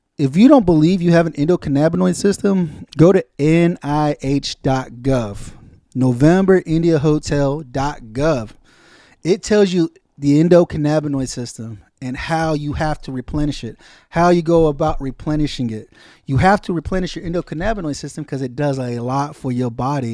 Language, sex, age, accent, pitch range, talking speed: English, male, 30-49, American, 135-175 Hz, 140 wpm